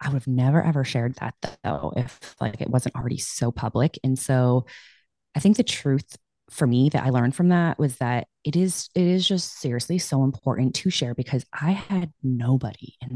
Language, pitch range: English, 125-155 Hz